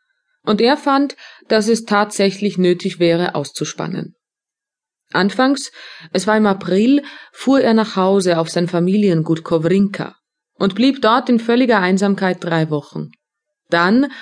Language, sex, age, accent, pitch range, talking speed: German, female, 30-49, German, 175-240 Hz, 130 wpm